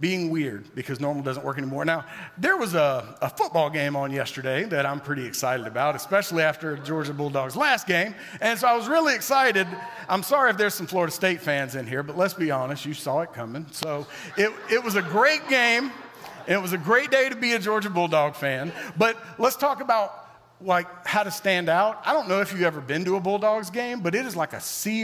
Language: English